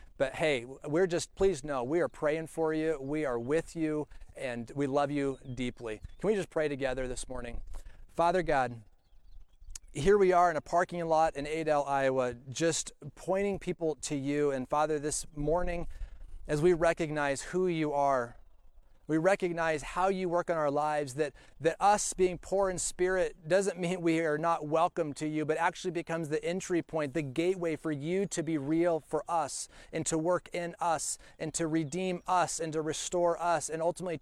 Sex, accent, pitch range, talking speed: male, American, 130-175 Hz, 190 wpm